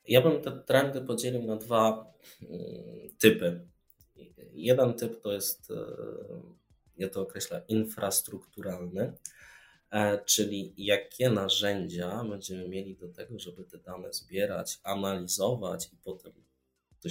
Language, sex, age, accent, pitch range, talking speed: Polish, male, 20-39, native, 90-115 Hz, 110 wpm